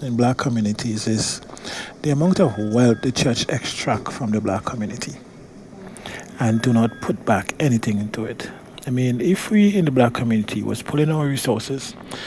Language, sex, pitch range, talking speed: English, male, 115-145 Hz, 170 wpm